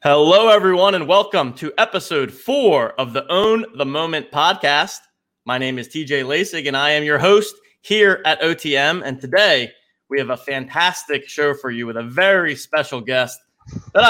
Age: 20-39